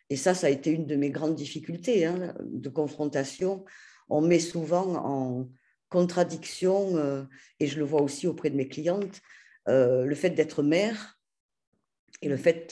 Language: French